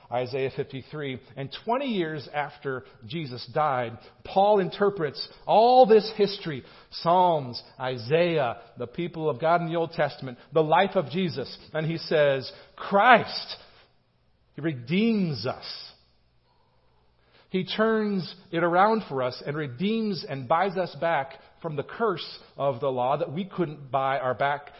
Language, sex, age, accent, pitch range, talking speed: English, male, 40-59, American, 130-170 Hz, 140 wpm